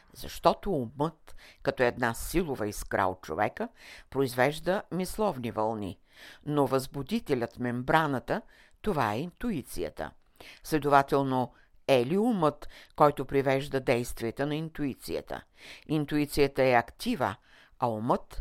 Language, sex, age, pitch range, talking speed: Bulgarian, female, 60-79, 115-150 Hz, 100 wpm